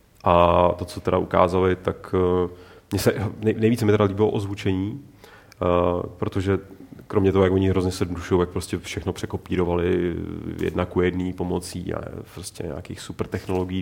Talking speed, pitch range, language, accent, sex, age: 145 wpm, 90-100 Hz, Czech, native, male, 30-49